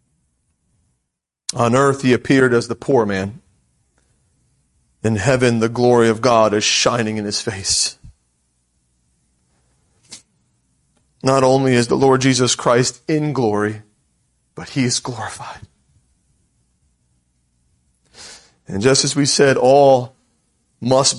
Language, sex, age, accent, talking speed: English, male, 30-49, American, 110 wpm